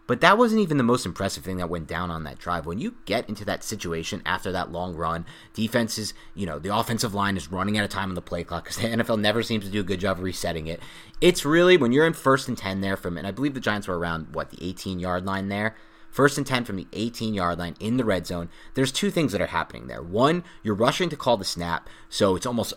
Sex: male